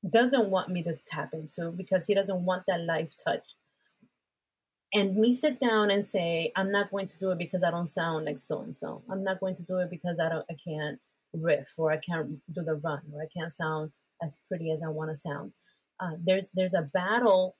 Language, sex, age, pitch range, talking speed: English, female, 30-49, 170-210 Hz, 220 wpm